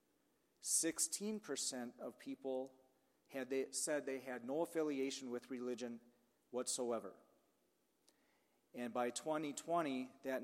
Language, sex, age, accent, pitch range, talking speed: English, male, 40-59, American, 130-160 Hz, 100 wpm